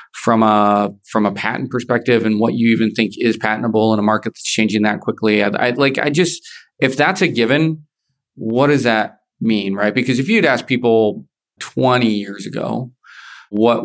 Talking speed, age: 185 wpm, 30-49